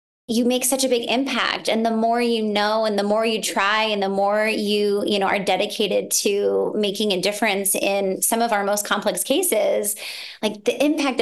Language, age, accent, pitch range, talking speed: English, 20-39, American, 200-240 Hz, 205 wpm